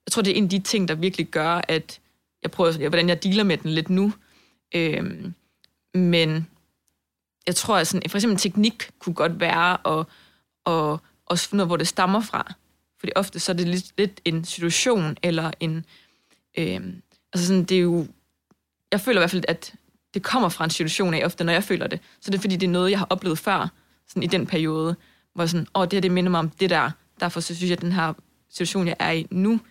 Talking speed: 225 wpm